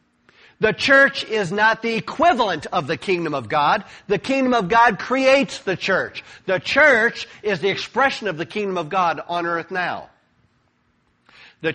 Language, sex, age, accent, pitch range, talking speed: English, male, 50-69, American, 155-215 Hz, 165 wpm